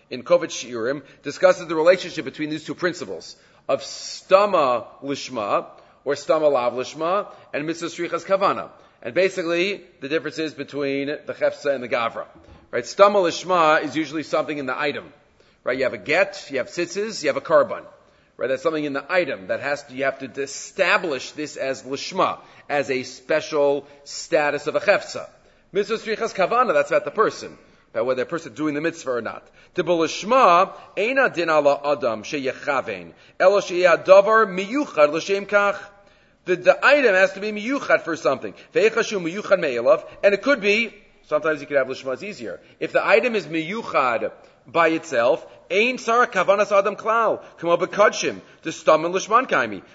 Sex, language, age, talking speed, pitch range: male, English, 40-59, 175 wpm, 150-200 Hz